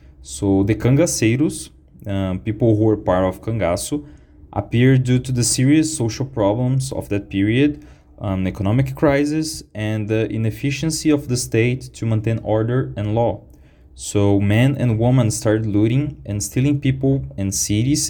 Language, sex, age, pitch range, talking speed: English, male, 20-39, 95-125 Hz, 150 wpm